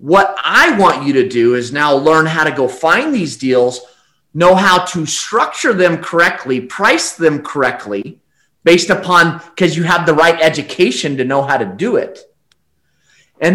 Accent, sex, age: American, male, 30-49